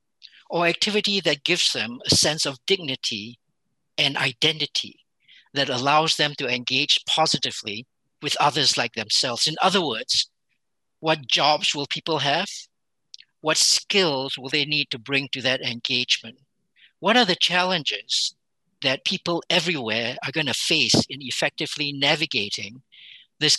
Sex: male